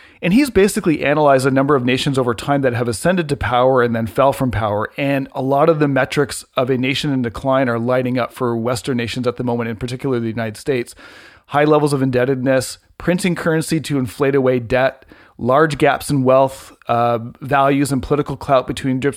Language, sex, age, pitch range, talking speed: English, male, 40-59, 125-145 Hz, 205 wpm